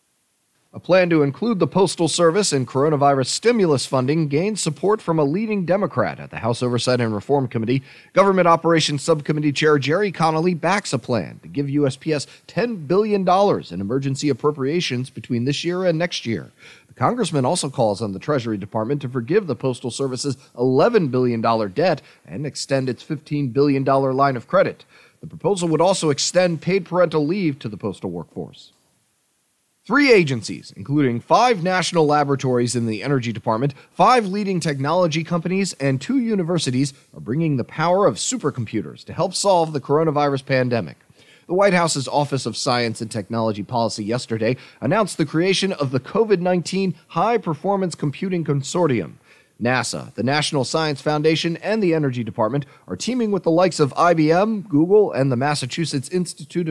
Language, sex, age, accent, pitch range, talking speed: English, male, 30-49, American, 130-180 Hz, 160 wpm